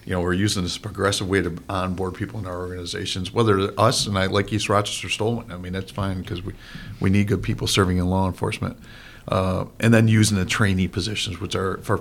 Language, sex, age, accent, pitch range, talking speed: English, male, 50-69, American, 95-110 Hz, 230 wpm